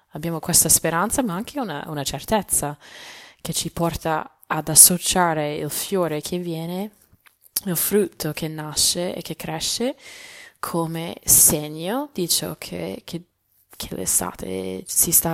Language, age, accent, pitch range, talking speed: Italian, 20-39, native, 145-175 Hz, 130 wpm